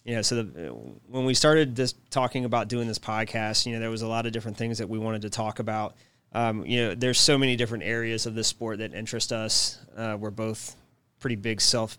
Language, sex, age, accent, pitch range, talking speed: English, male, 20-39, American, 110-125 Hz, 245 wpm